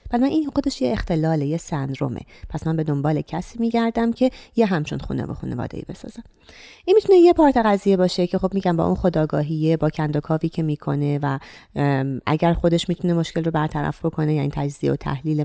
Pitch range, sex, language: 150-220 Hz, female, Persian